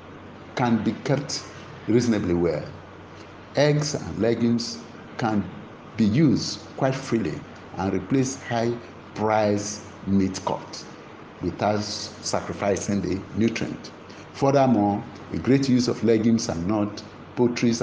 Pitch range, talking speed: 95-120 Hz, 105 wpm